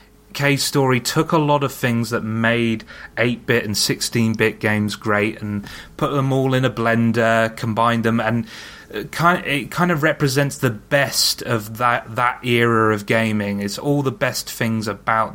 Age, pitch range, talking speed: 30-49, 110-135 Hz, 170 wpm